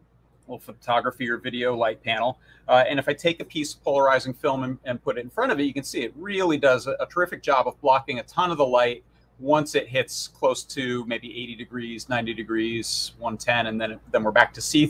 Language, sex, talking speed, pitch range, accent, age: English, male, 235 wpm, 120-140 Hz, American, 40-59